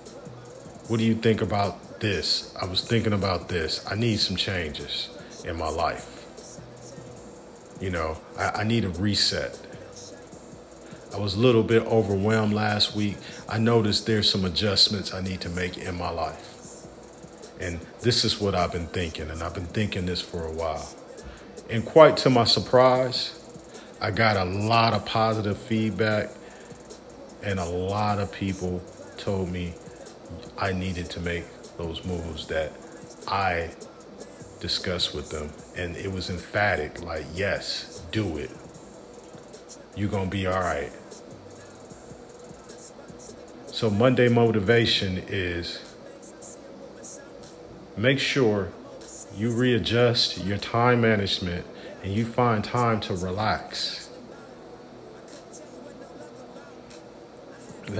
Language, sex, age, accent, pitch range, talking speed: English, male, 40-59, American, 90-115 Hz, 125 wpm